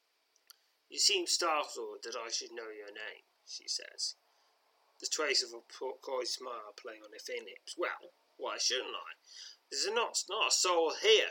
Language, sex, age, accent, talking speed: English, male, 30-49, British, 170 wpm